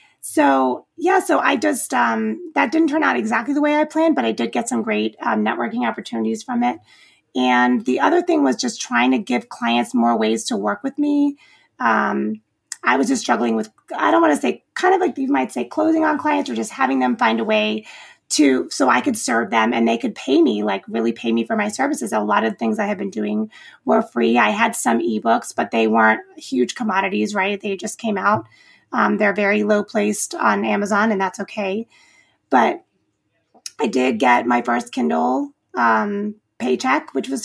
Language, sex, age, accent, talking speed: English, female, 30-49, American, 210 wpm